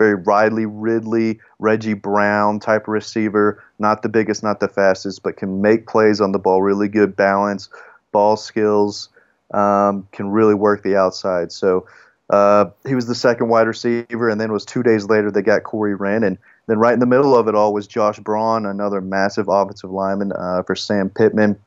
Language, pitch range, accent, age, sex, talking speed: English, 100-110 Hz, American, 30-49, male, 195 wpm